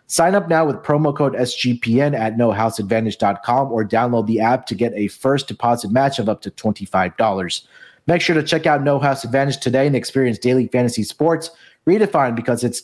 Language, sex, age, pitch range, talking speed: English, male, 30-49, 120-150 Hz, 185 wpm